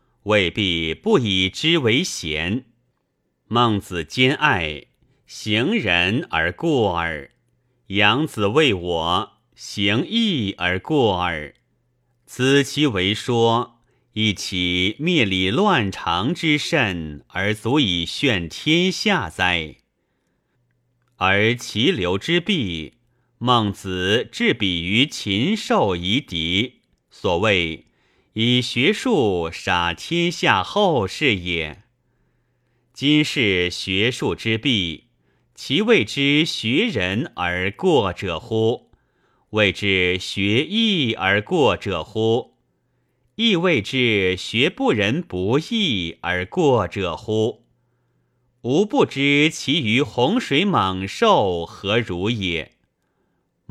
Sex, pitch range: male, 95-125 Hz